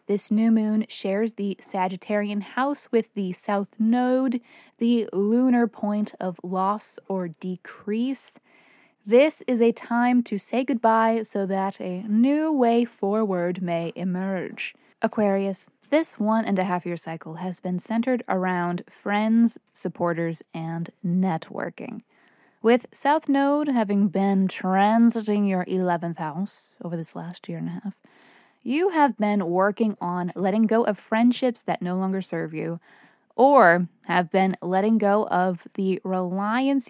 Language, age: English, 20-39